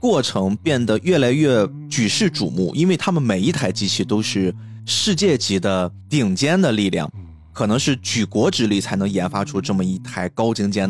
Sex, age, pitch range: male, 20-39, 100-135 Hz